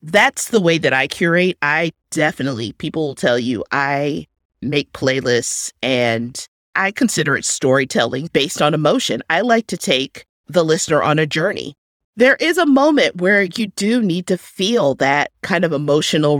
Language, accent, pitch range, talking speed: English, American, 140-190 Hz, 170 wpm